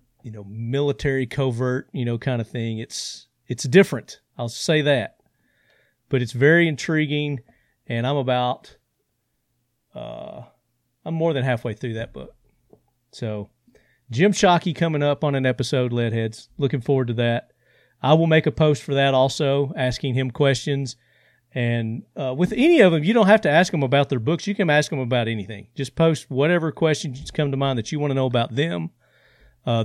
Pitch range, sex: 120-145 Hz, male